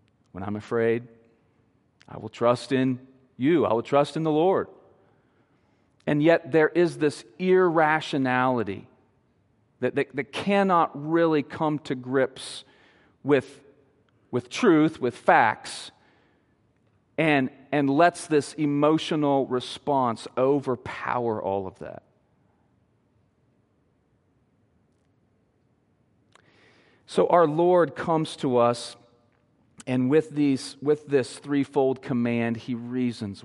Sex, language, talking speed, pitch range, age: male, English, 105 wpm, 110-140 Hz, 40-59